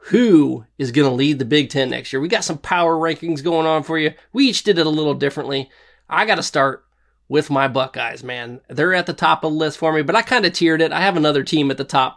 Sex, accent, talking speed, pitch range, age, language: male, American, 275 wpm, 135-165 Hz, 20-39, English